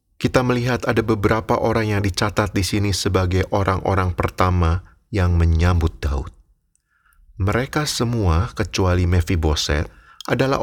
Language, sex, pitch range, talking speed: Indonesian, male, 90-125 Hz, 115 wpm